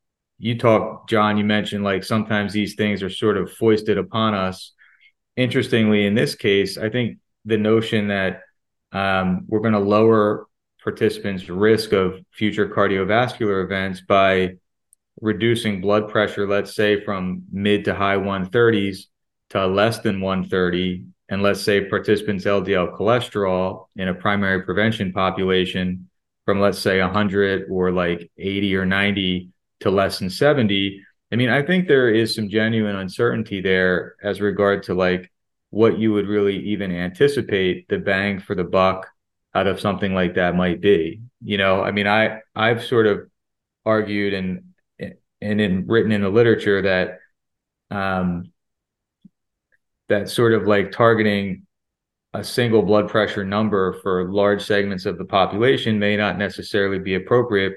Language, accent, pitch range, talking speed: English, American, 95-105 Hz, 150 wpm